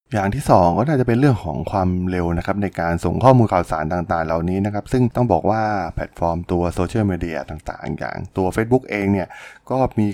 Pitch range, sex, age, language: 90-115 Hz, male, 20-39, Thai